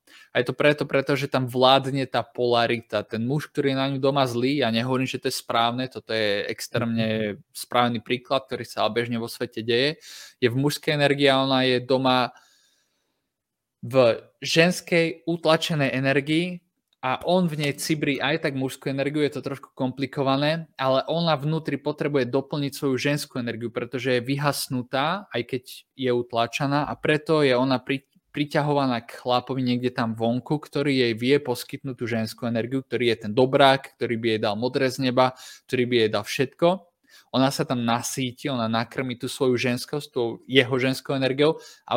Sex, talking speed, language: male, 175 wpm, Slovak